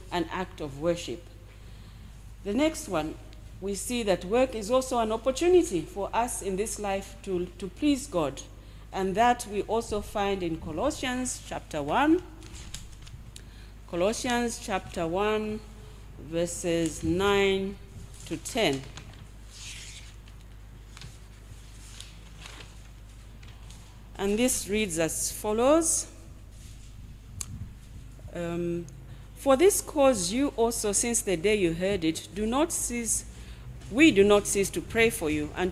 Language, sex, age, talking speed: English, female, 40-59, 115 wpm